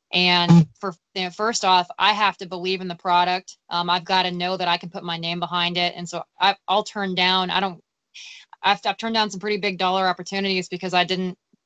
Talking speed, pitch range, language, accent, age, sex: 235 wpm, 180-200 Hz, English, American, 20-39, female